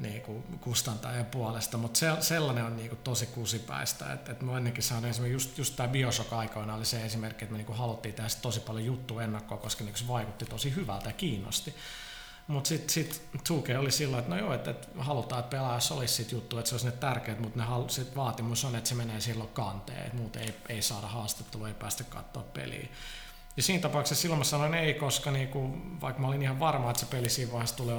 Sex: male